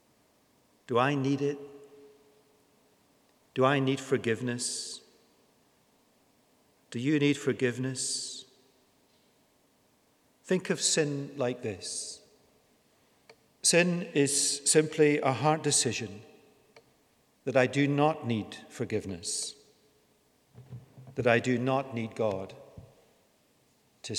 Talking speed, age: 90 wpm, 50-69